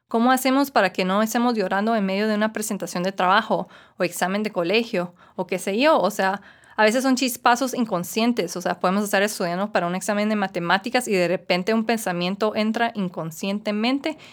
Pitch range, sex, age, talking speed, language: 180-225 Hz, female, 20-39, 195 wpm, English